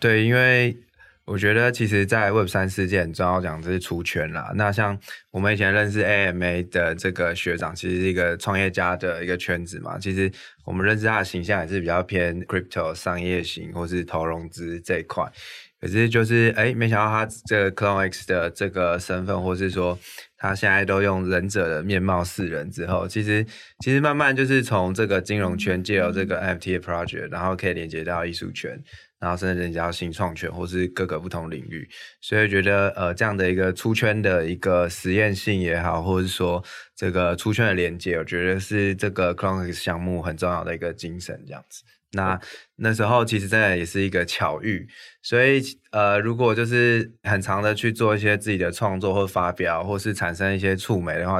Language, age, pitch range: Chinese, 20-39, 90-105 Hz